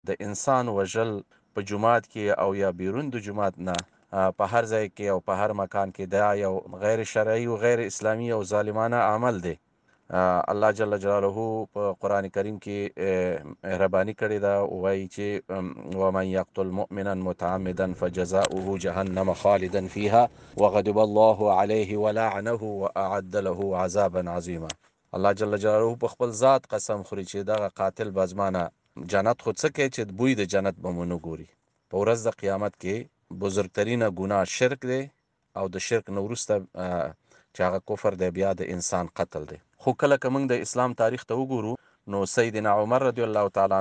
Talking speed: 170 wpm